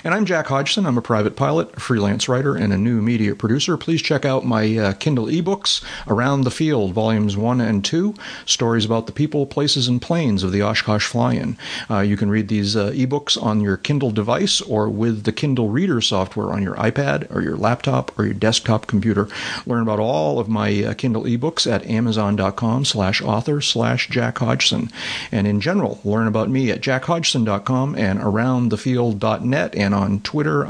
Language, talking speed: English, 185 wpm